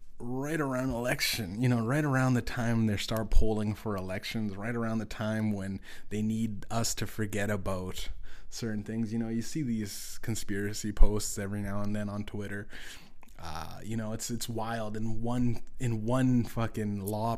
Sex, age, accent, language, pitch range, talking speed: male, 20-39, American, English, 100-115 Hz, 180 wpm